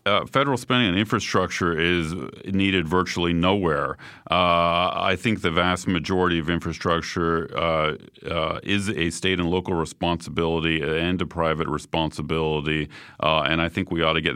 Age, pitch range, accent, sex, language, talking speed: 40-59, 80-95 Hz, American, male, English, 155 wpm